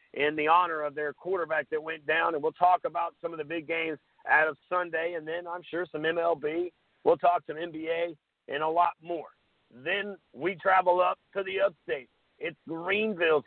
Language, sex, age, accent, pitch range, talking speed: English, male, 50-69, American, 155-195 Hz, 195 wpm